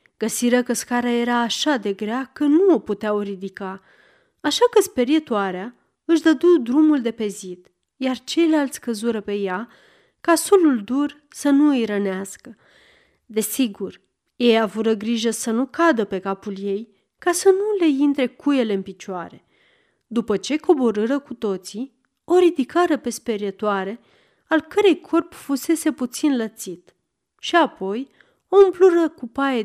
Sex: female